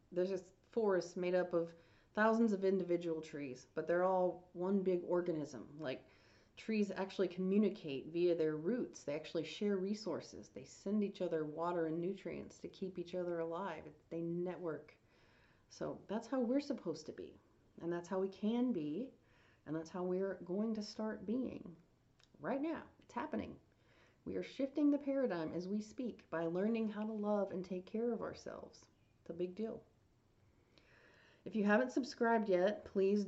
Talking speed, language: 170 wpm, English